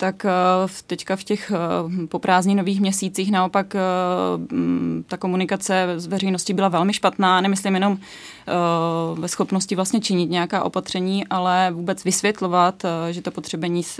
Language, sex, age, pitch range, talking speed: Czech, female, 20-39, 170-195 Hz, 125 wpm